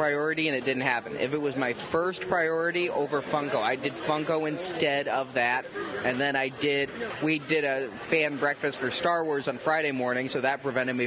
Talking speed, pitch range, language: 205 wpm, 135-160 Hz, English